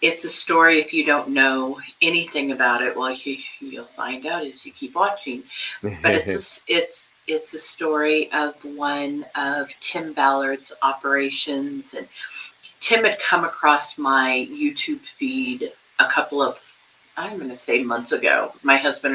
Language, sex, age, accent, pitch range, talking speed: English, female, 40-59, American, 135-175 Hz, 150 wpm